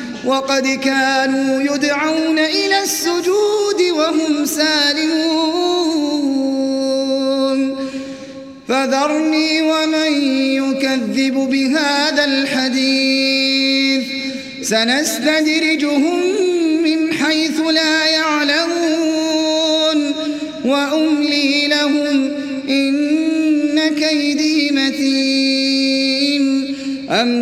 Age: 30-49